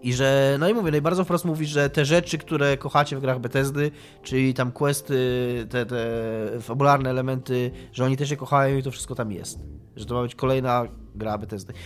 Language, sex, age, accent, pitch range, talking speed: Polish, male, 20-39, native, 115-145 Hz, 205 wpm